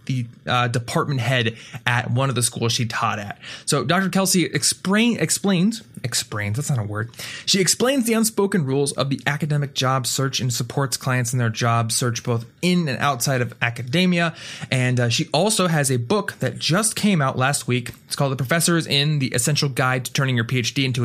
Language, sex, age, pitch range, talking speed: English, male, 20-39, 125-155 Hz, 200 wpm